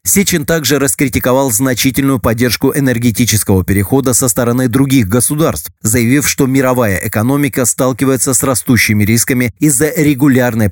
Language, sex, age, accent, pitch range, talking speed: Russian, male, 30-49, native, 110-135 Hz, 120 wpm